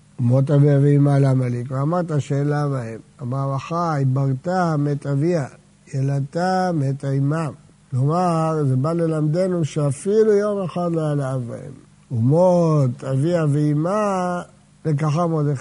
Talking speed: 120 wpm